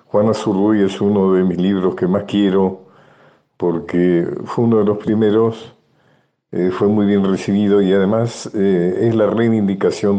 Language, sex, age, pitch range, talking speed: Spanish, male, 50-69, 85-100 Hz, 160 wpm